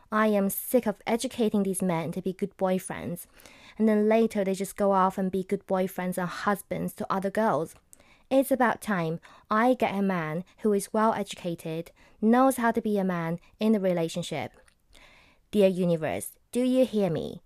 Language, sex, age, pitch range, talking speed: English, female, 20-39, 165-210 Hz, 180 wpm